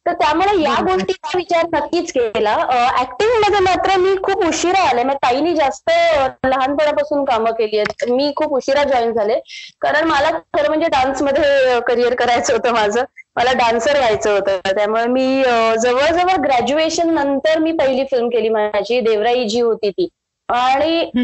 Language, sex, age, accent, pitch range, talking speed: Marathi, female, 20-39, native, 235-325 Hz, 145 wpm